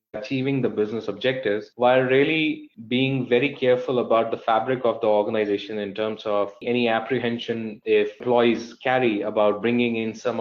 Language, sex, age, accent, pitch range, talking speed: English, male, 20-39, Indian, 110-130 Hz, 155 wpm